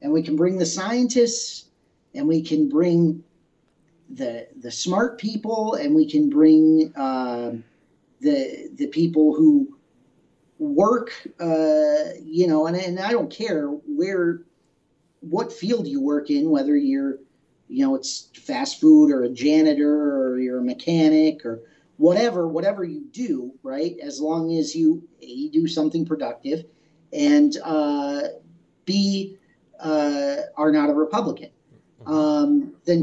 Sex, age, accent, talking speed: male, 40-59, American, 140 wpm